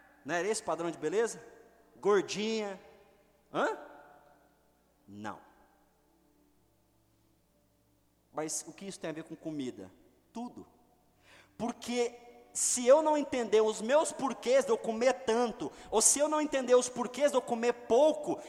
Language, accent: Portuguese, Brazilian